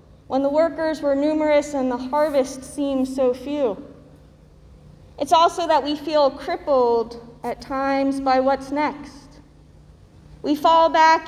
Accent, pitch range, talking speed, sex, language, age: American, 255-295 Hz, 135 wpm, female, English, 30-49